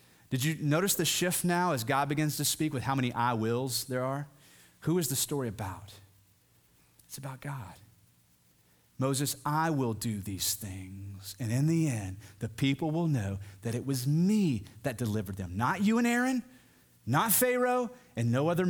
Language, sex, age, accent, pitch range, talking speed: English, male, 30-49, American, 110-165 Hz, 180 wpm